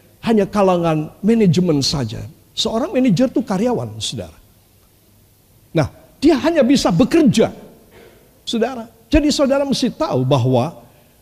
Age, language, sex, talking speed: 50-69, Indonesian, male, 105 wpm